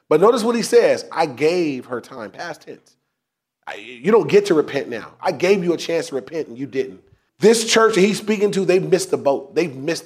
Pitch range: 155-195 Hz